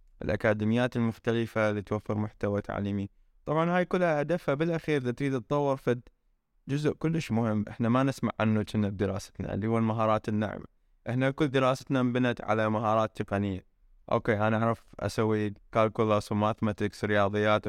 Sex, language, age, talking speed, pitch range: male, English, 20-39, 140 wpm, 105-135 Hz